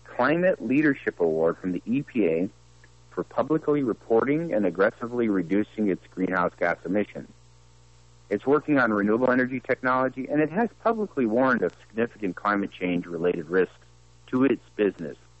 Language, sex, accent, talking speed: English, male, American, 140 wpm